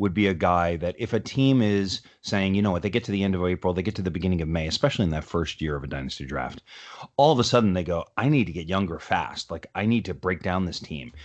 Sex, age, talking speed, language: male, 30-49, 300 wpm, English